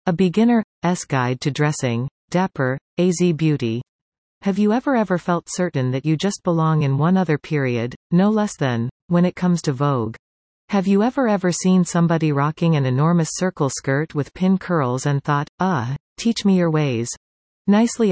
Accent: American